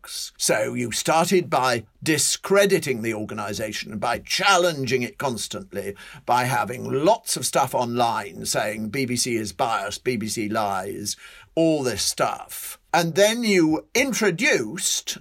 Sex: male